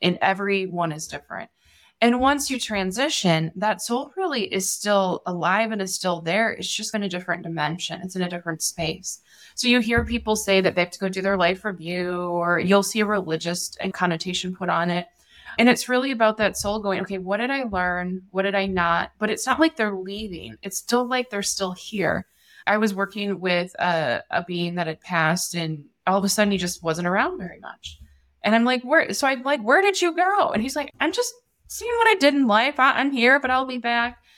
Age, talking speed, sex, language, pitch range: 20-39, 225 wpm, female, English, 175-225 Hz